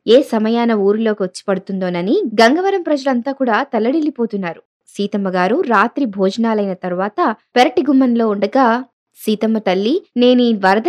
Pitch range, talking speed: 195-265 Hz, 105 wpm